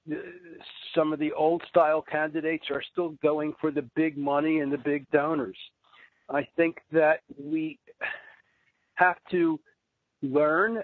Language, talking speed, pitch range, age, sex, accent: English, 135 wpm, 145-185 Hz, 60-79, male, American